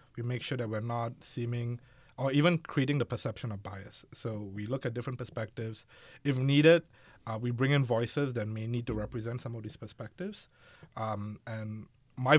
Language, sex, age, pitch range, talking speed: English, male, 30-49, 110-130 Hz, 190 wpm